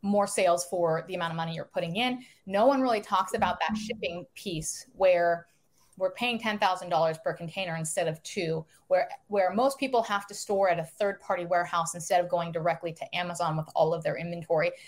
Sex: female